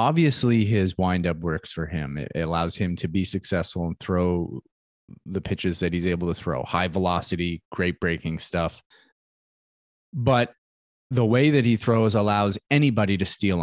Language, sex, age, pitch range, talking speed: English, male, 20-39, 95-120 Hz, 160 wpm